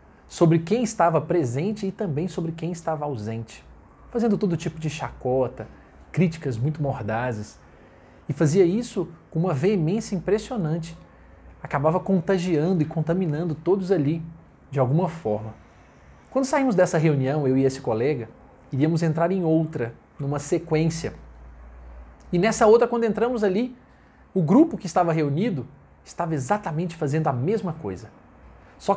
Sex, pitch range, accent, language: male, 130-190 Hz, Brazilian, Portuguese